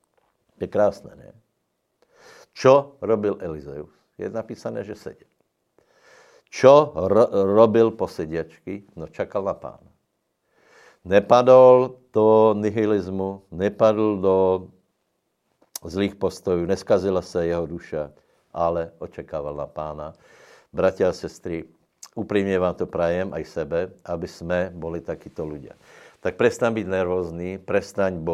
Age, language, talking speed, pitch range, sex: 60-79, Slovak, 110 wpm, 85-105 Hz, male